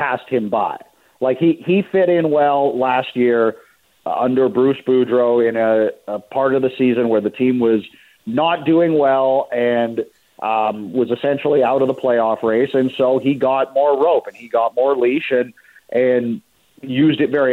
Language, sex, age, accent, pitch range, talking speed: English, male, 40-59, American, 120-145 Hz, 180 wpm